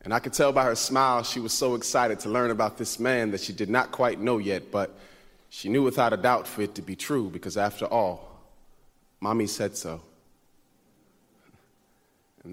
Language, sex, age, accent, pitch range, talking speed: English, male, 30-49, American, 115-145 Hz, 195 wpm